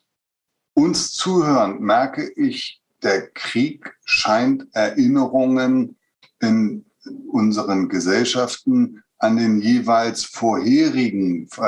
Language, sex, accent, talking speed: German, male, German, 75 wpm